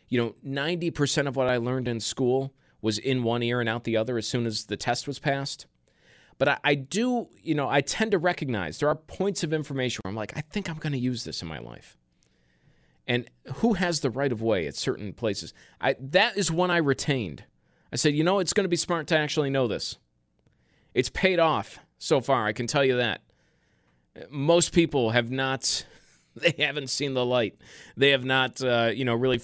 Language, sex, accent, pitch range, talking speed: English, male, American, 125-165 Hz, 220 wpm